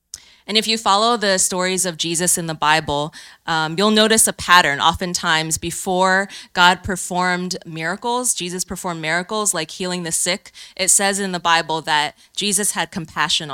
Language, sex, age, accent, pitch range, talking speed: English, female, 20-39, American, 160-195 Hz, 165 wpm